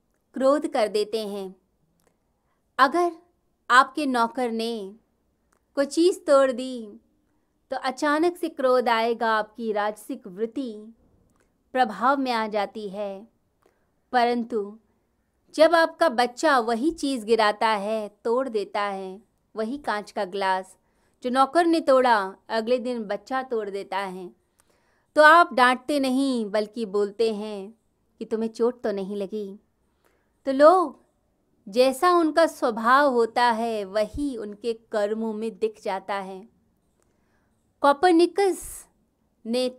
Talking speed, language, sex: 120 wpm, Hindi, female